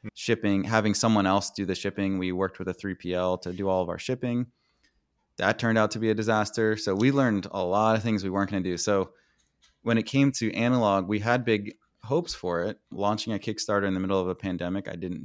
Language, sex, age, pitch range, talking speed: English, male, 20-39, 90-110 Hz, 235 wpm